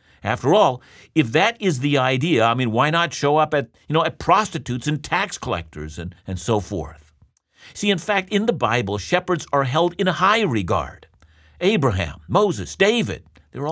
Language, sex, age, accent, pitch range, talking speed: English, male, 50-69, American, 110-170 Hz, 170 wpm